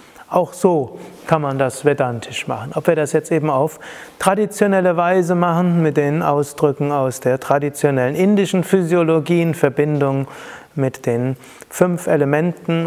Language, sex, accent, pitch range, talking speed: German, male, German, 145-180 Hz, 140 wpm